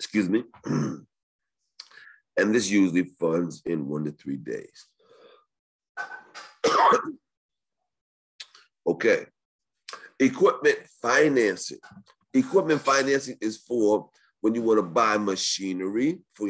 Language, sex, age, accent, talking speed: English, male, 40-59, American, 85 wpm